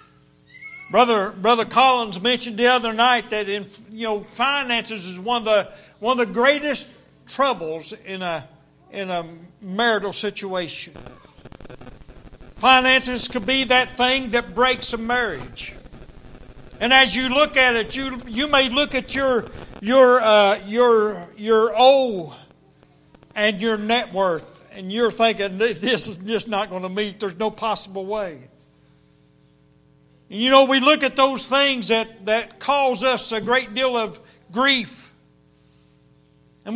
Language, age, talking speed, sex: English, 60-79, 145 wpm, male